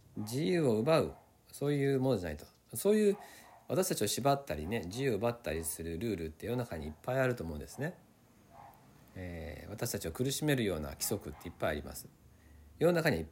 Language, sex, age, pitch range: Japanese, male, 50-69, 95-140 Hz